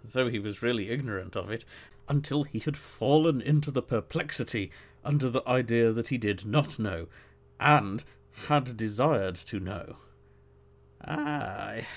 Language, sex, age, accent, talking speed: English, male, 50-69, British, 140 wpm